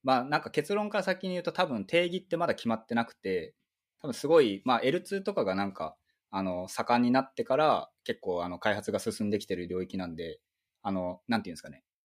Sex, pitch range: male, 95-150 Hz